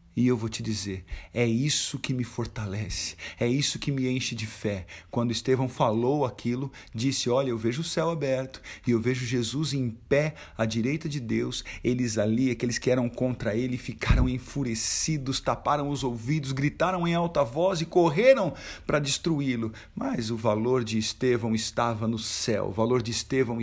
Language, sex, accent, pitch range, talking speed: Portuguese, male, Brazilian, 110-135 Hz, 180 wpm